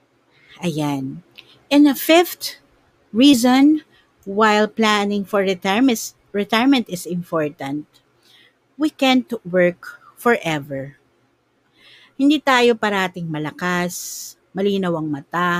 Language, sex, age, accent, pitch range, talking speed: Filipino, female, 50-69, native, 165-240 Hz, 80 wpm